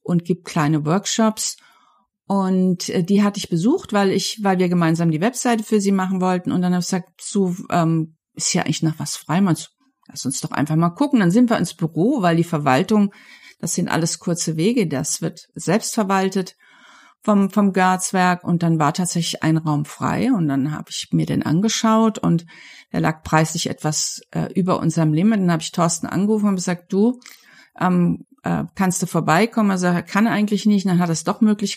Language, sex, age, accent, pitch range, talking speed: German, female, 50-69, German, 170-220 Hz, 205 wpm